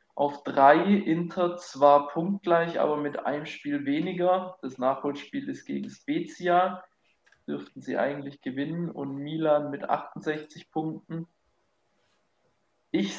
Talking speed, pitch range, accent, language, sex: 115 wpm, 140-175 Hz, German, German, male